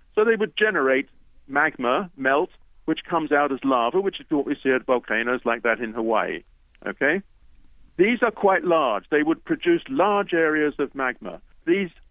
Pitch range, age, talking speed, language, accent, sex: 120-165 Hz, 50-69, 175 wpm, English, British, male